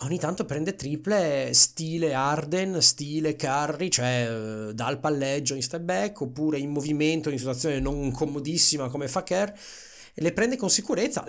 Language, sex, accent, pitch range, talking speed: Italian, male, native, 135-185 Hz, 155 wpm